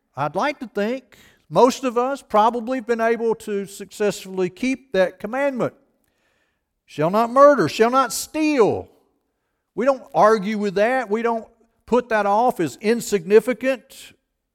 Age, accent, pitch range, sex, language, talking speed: 50-69, American, 185-245 Hz, male, English, 140 wpm